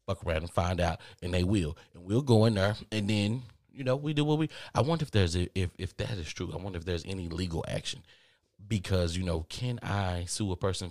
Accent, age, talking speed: American, 30-49, 255 wpm